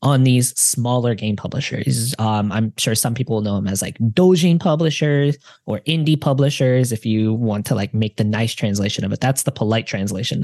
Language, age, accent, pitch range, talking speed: English, 10-29, American, 115-155 Hz, 200 wpm